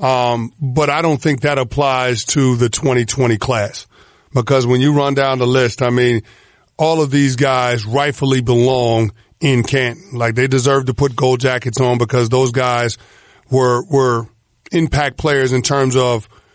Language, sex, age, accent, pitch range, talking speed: English, male, 40-59, American, 125-145 Hz, 165 wpm